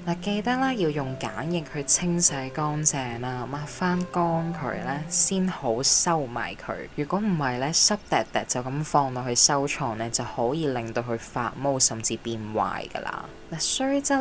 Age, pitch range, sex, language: 10-29, 115-160 Hz, female, Chinese